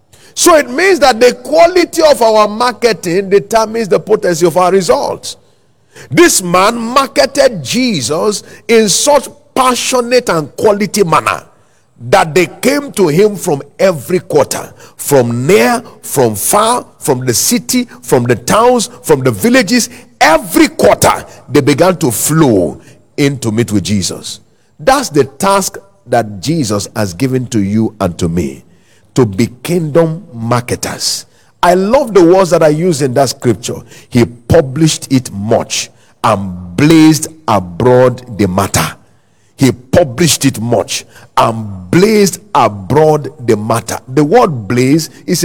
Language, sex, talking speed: English, male, 140 wpm